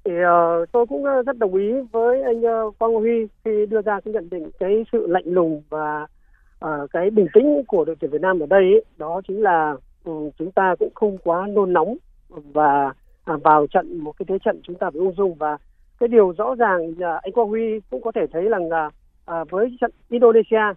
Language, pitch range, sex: Vietnamese, 165-230 Hz, male